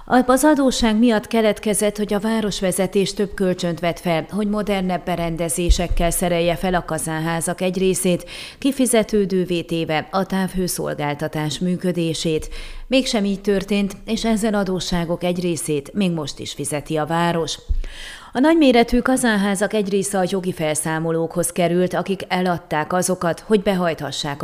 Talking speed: 130 wpm